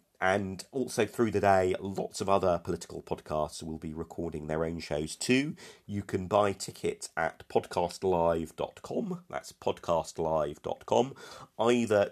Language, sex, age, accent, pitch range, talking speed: English, male, 40-59, British, 90-120 Hz, 130 wpm